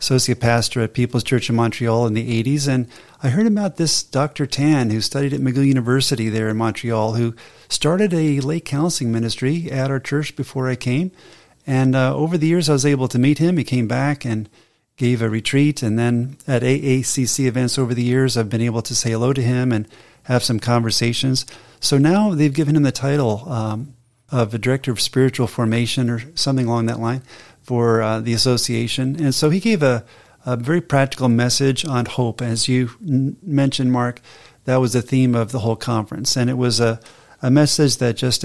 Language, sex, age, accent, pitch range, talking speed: English, male, 40-59, American, 120-145 Hz, 200 wpm